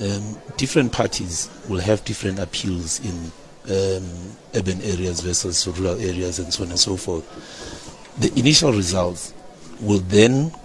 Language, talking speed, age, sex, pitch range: English, 140 wpm, 60-79, male, 95-120 Hz